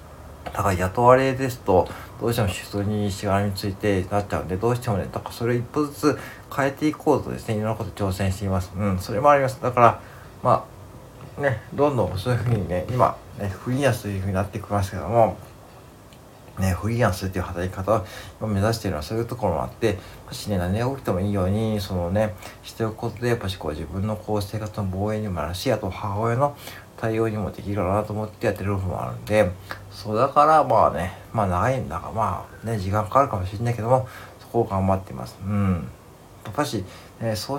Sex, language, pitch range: male, Japanese, 95-120 Hz